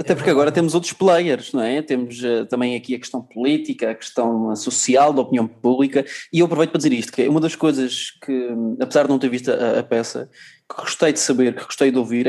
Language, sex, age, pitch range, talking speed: Portuguese, male, 20-39, 135-180 Hz, 230 wpm